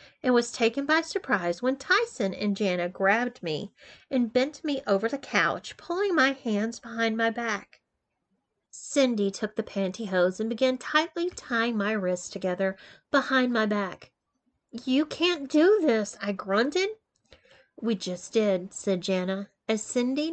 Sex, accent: female, American